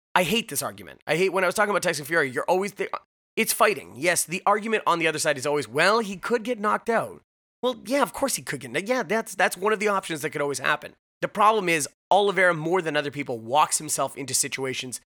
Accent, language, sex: American, English, male